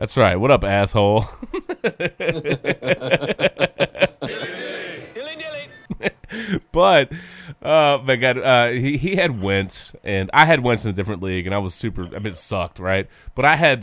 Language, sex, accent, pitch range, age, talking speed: English, male, American, 100-140 Hz, 30-49, 145 wpm